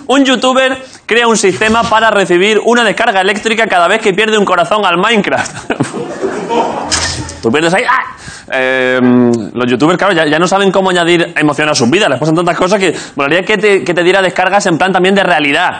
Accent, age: Spanish, 20-39